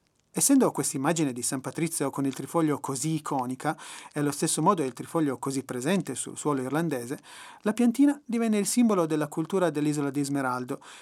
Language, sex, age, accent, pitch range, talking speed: Italian, male, 30-49, native, 140-185 Hz, 175 wpm